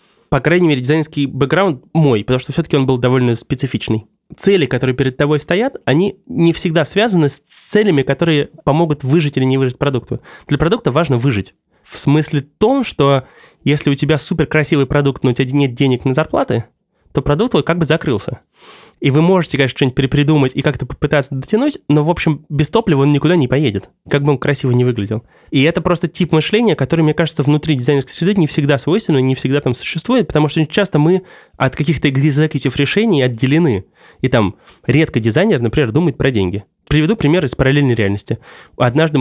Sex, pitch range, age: male, 130-165 Hz, 20-39